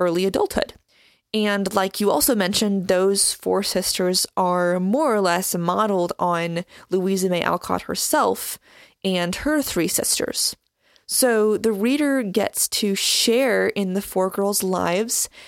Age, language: 20-39, English